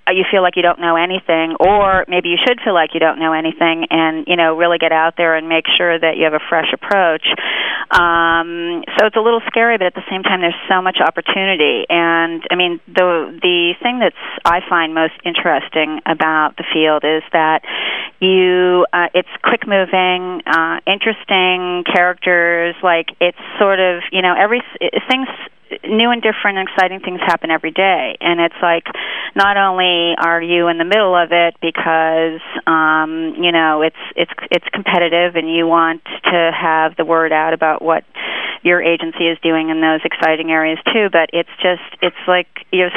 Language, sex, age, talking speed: English, female, 30-49, 185 wpm